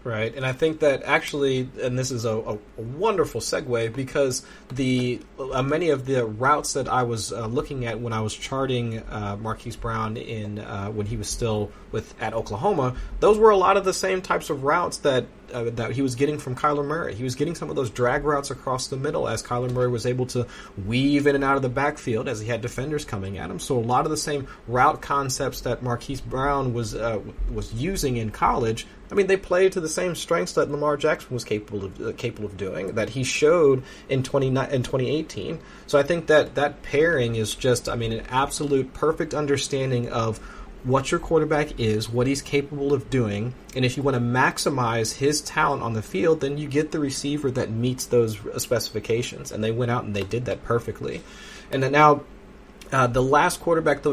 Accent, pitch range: American, 115-145 Hz